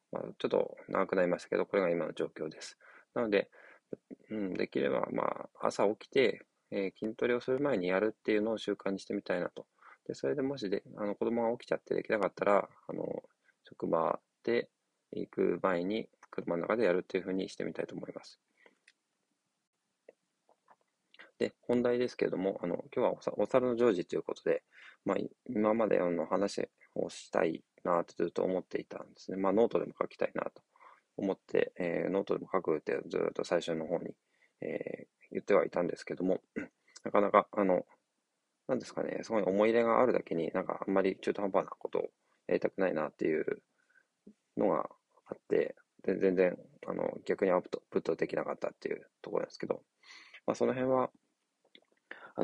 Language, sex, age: Japanese, male, 20-39